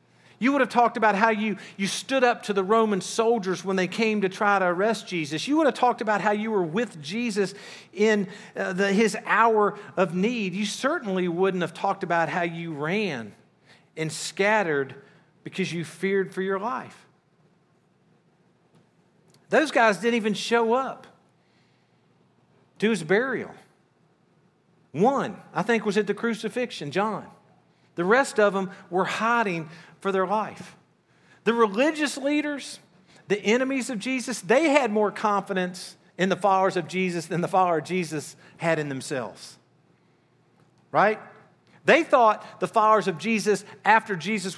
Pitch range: 180-225 Hz